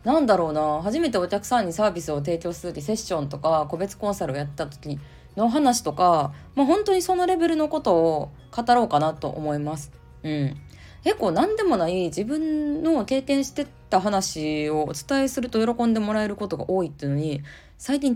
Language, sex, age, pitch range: Japanese, female, 20-39, 155-245 Hz